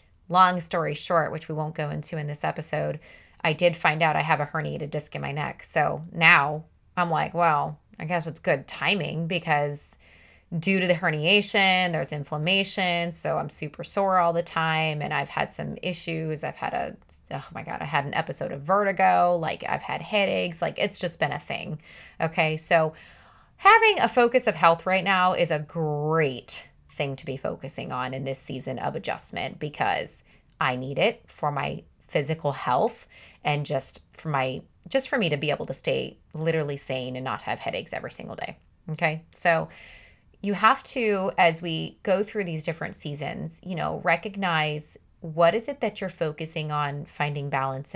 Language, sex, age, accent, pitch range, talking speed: English, female, 20-39, American, 150-180 Hz, 185 wpm